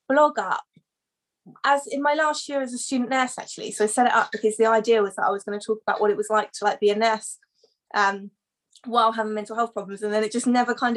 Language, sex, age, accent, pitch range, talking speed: English, female, 20-39, British, 200-230 Hz, 270 wpm